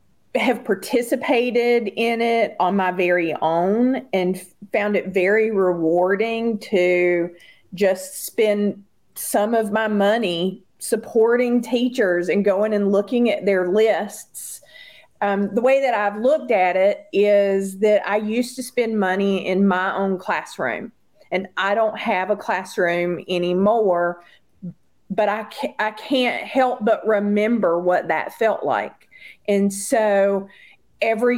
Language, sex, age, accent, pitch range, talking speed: English, female, 40-59, American, 185-230 Hz, 130 wpm